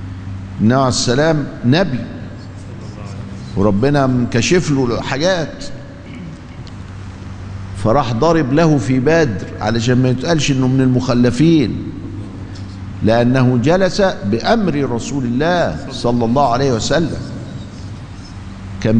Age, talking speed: 50-69, 90 wpm